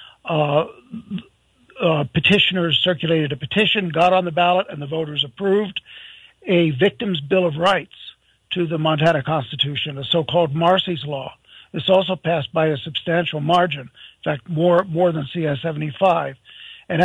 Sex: male